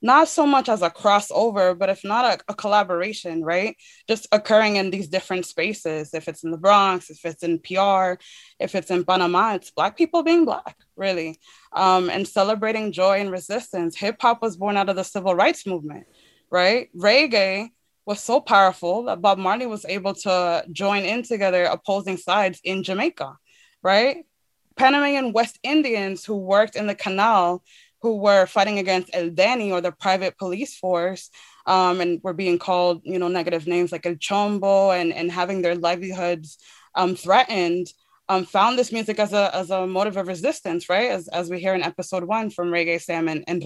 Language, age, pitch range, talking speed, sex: English, 20-39, 180-215 Hz, 185 wpm, female